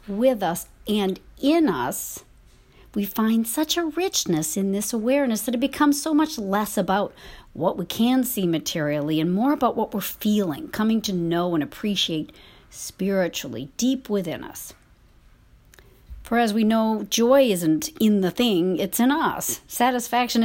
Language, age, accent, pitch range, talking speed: English, 50-69, American, 175-245 Hz, 155 wpm